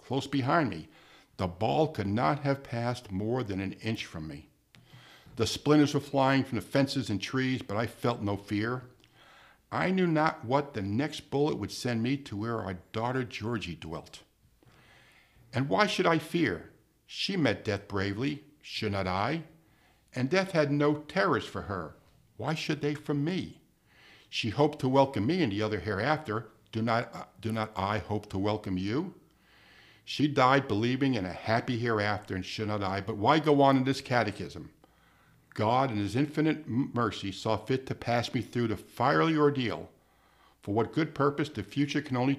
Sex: male